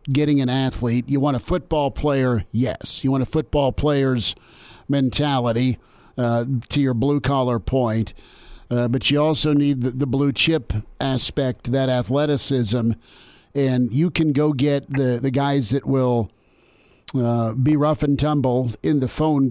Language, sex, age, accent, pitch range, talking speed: English, male, 50-69, American, 125-145 Hz, 155 wpm